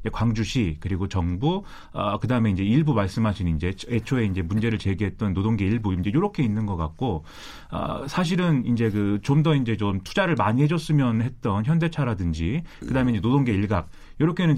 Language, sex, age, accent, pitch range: Korean, male, 30-49, native, 100-145 Hz